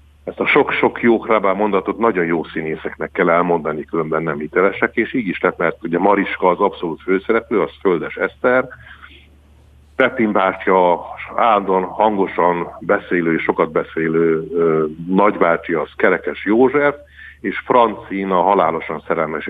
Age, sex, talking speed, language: 60-79, male, 130 wpm, Hungarian